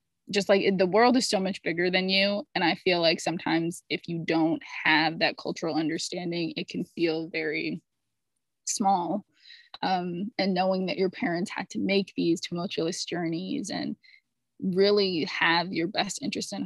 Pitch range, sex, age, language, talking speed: 170-215 Hz, female, 20-39, English, 165 wpm